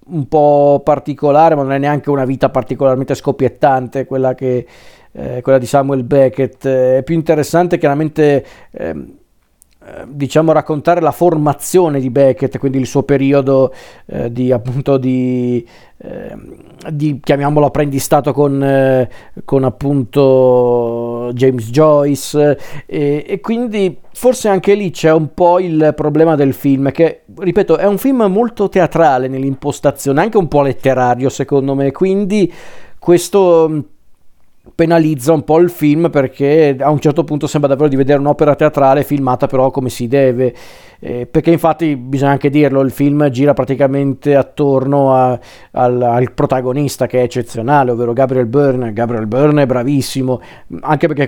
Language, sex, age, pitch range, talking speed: Italian, male, 40-59, 130-155 Hz, 145 wpm